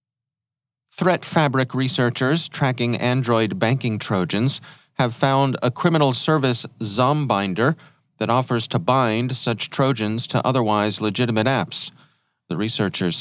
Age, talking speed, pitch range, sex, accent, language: 40-59, 115 wpm, 110-130 Hz, male, American, English